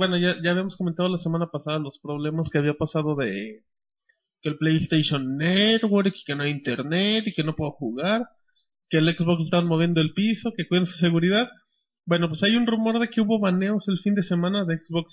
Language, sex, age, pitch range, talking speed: Spanish, male, 30-49, 160-205 Hz, 215 wpm